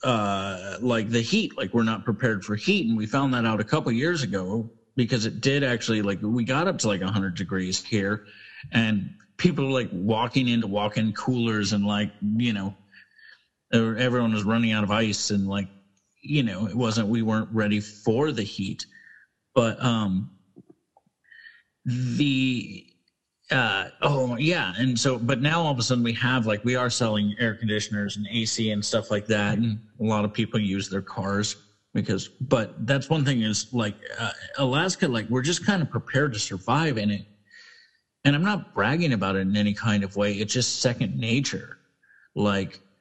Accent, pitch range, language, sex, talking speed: American, 100-125 Hz, English, male, 185 wpm